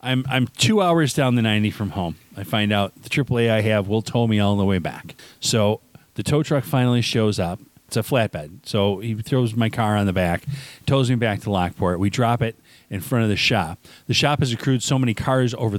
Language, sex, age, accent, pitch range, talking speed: English, male, 40-59, American, 100-135 Hz, 235 wpm